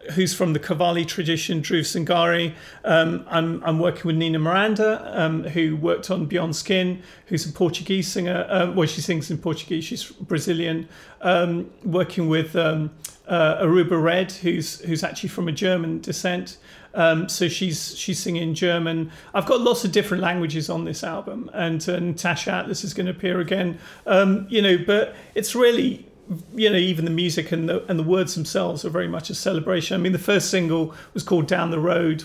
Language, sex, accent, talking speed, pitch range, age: English, male, British, 190 wpm, 165-185 Hz, 40-59